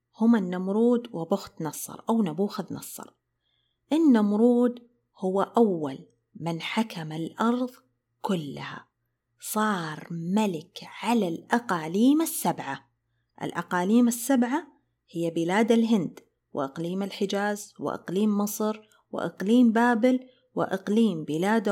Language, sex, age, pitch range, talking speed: Arabic, female, 30-49, 170-235 Hz, 90 wpm